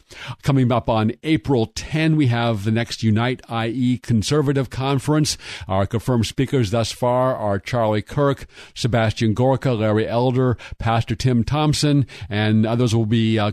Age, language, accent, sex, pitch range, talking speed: 50-69, English, American, male, 110-130 Hz, 145 wpm